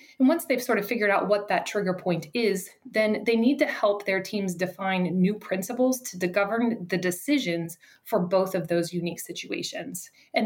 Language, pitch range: English, 180-225 Hz